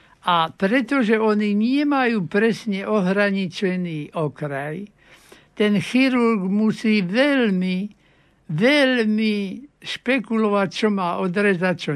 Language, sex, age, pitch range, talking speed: Slovak, male, 60-79, 180-215 Hz, 85 wpm